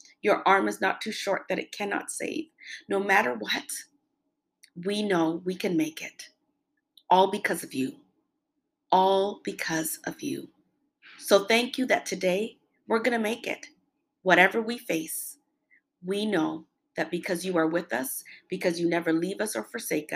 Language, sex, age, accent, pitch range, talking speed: English, female, 40-59, American, 175-295 Hz, 165 wpm